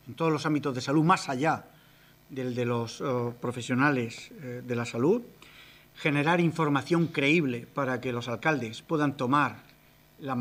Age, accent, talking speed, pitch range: 40-59, Spanish, 145 wpm, 125-160 Hz